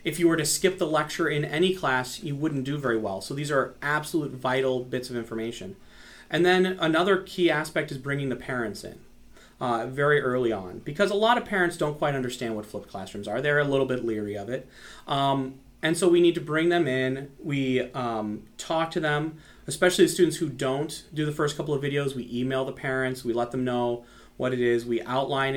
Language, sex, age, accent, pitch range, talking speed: English, male, 30-49, American, 125-165 Hz, 220 wpm